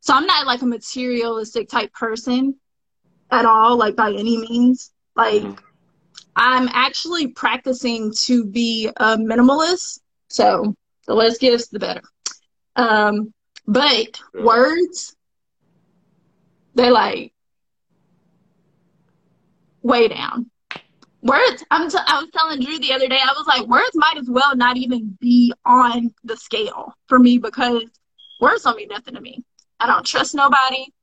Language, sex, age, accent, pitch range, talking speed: English, female, 20-39, American, 230-275 Hz, 135 wpm